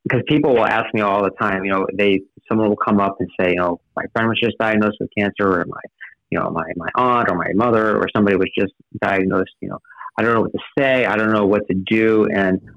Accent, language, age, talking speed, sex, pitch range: American, English, 30-49, 265 wpm, male, 100-115 Hz